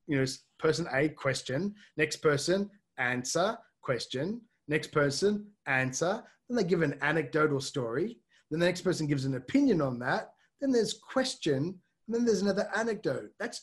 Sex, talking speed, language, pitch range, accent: male, 160 wpm, English, 145-200 Hz, Australian